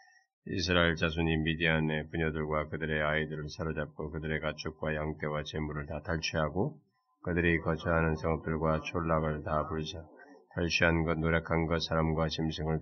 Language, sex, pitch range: Korean, male, 80-85 Hz